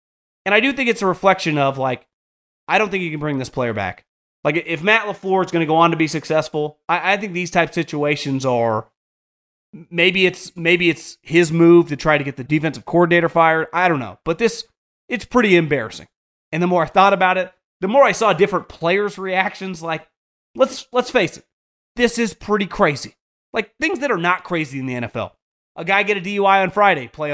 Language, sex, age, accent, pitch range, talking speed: English, male, 30-49, American, 160-200 Hz, 215 wpm